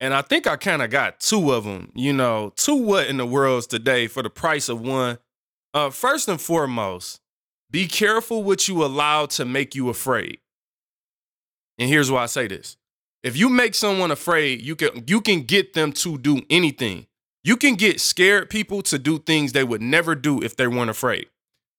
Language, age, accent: English, 20-39, American